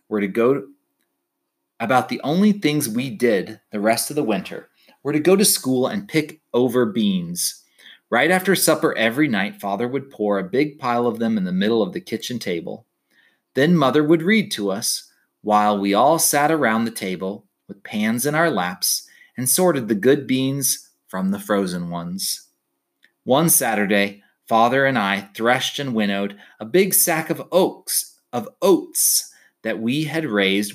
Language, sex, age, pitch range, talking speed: English, male, 30-49, 105-170 Hz, 175 wpm